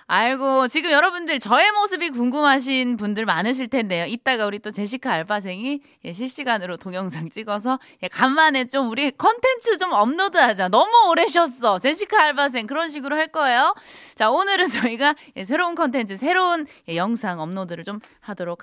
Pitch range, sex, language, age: 205-315 Hz, female, Korean, 20-39